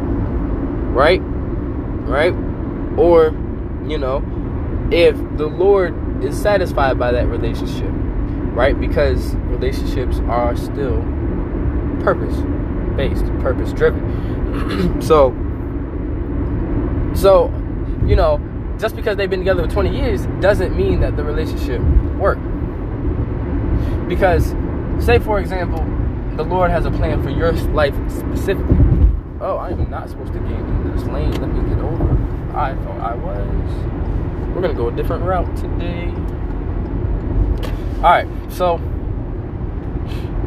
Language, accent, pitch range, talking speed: English, American, 85-135 Hz, 115 wpm